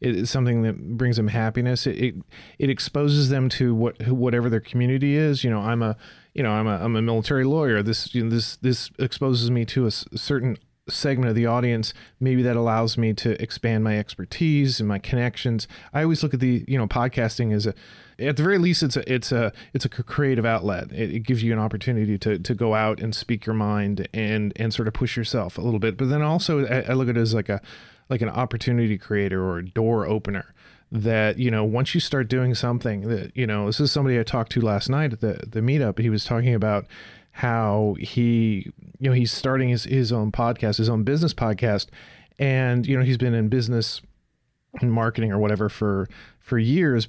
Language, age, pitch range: English, 30-49, 110-130 Hz